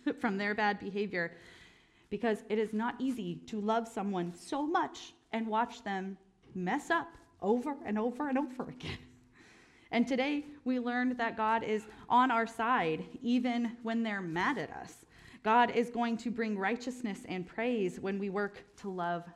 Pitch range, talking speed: 170-220 Hz, 165 wpm